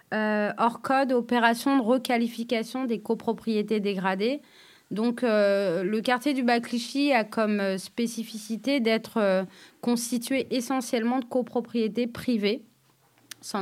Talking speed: 115 wpm